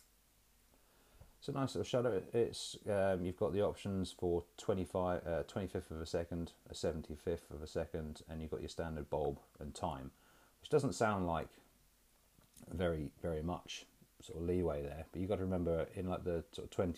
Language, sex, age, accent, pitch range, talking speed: English, male, 30-49, British, 75-90 Hz, 180 wpm